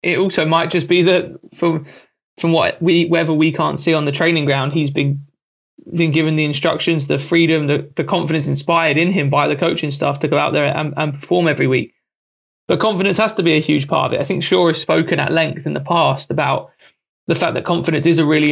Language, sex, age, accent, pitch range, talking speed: English, male, 20-39, British, 145-170 Hz, 235 wpm